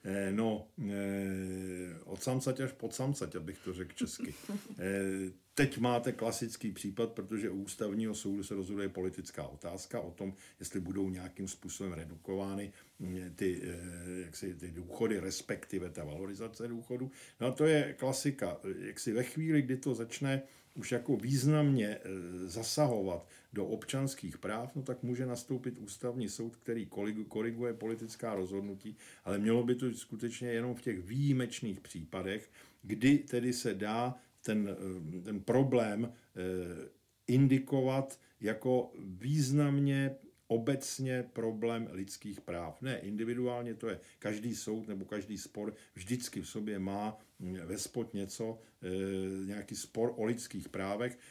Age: 50-69